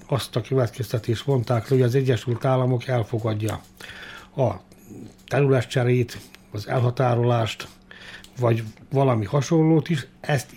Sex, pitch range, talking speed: male, 110-135 Hz, 100 wpm